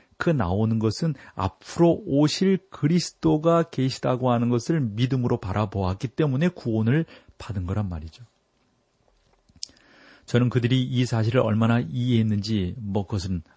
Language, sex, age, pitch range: Korean, male, 40-59, 105-135 Hz